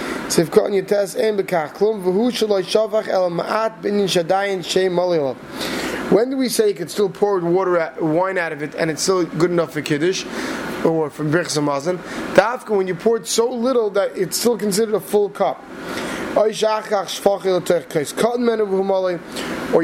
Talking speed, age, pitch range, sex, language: 115 wpm, 20-39, 170-200 Hz, male, English